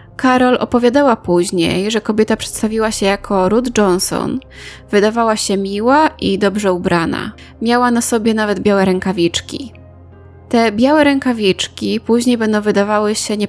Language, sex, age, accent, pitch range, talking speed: Polish, female, 20-39, native, 195-245 Hz, 135 wpm